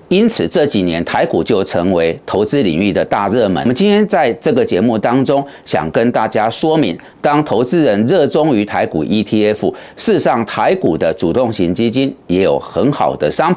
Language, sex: Chinese, male